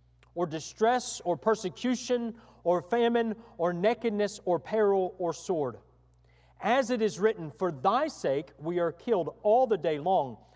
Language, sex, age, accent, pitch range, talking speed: English, male, 40-59, American, 170-230 Hz, 150 wpm